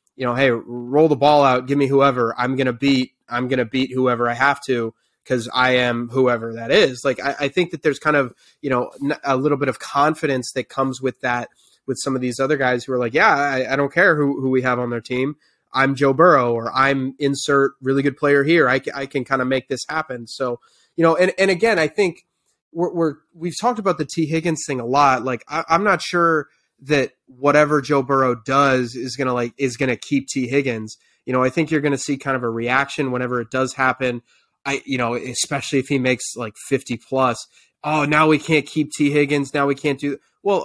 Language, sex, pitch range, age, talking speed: English, male, 125-150 Hz, 20-39, 240 wpm